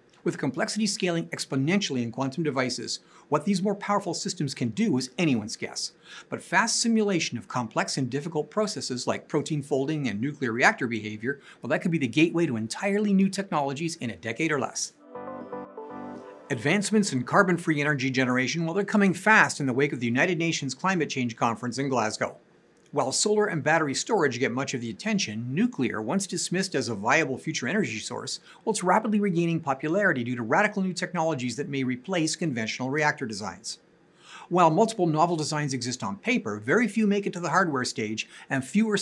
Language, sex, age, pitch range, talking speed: English, male, 50-69, 130-190 Hz, 185 wpm